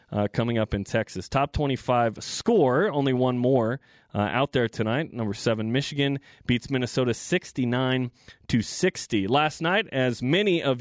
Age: 30-49